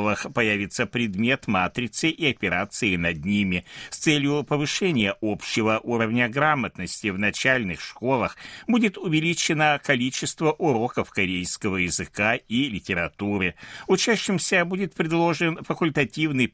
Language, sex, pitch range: Russian, male, 105-160 Hz